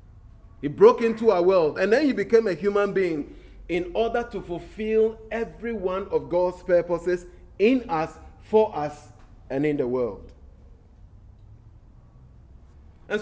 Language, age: English, 30-49